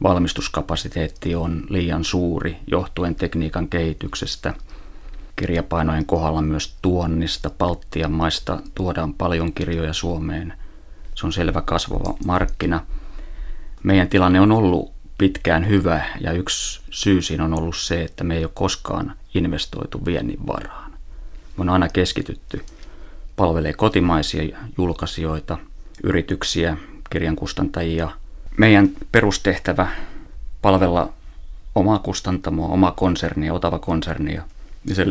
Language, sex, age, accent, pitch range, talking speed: Finnish, male, 30-49, native, 80-95 Hz, 105 wpm